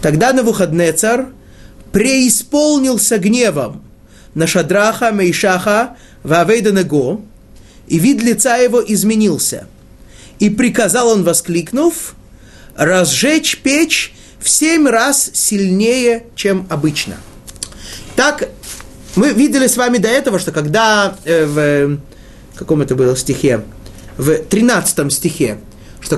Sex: male